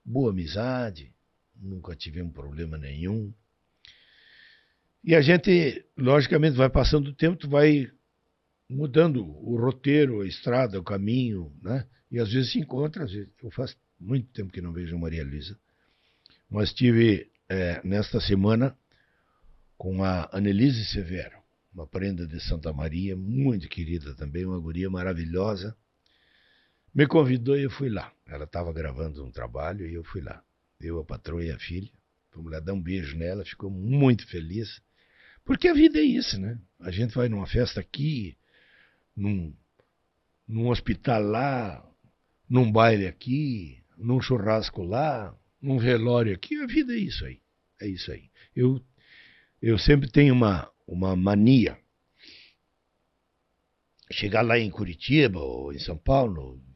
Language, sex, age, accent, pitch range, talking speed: Portuguese, male, 60-79, Brazilian, 90-130 Hz, 145 wpm